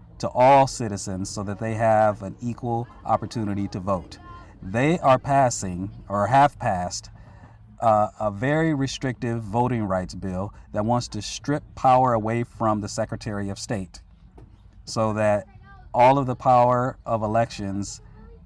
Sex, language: male, English